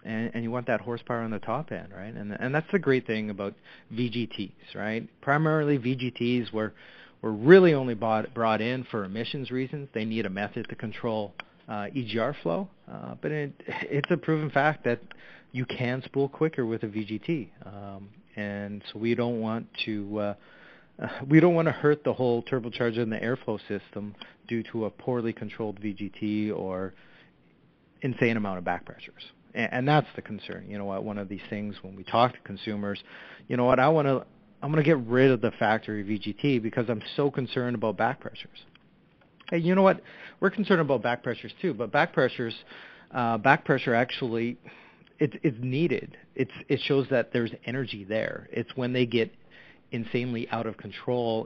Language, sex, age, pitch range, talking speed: English, male, 30-49, 110-135 Hz, 190 wpm